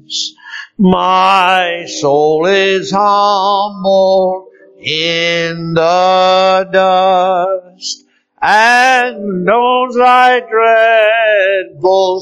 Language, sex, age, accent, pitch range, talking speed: English, male, 60-79, American, 180-225 Hz, 55 wpm